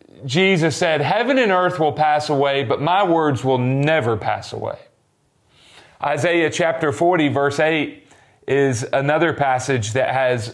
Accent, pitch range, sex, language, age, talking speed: American, 140-180 Hz, male, English, 40-59, 140 wpm